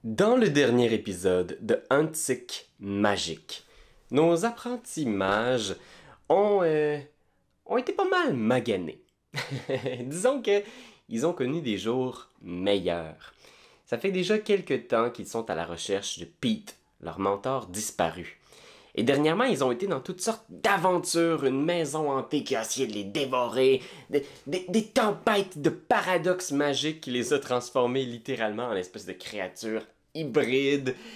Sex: male